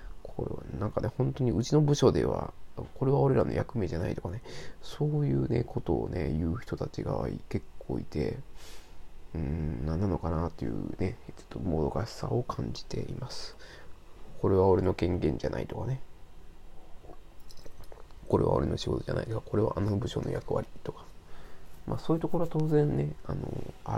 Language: Japanese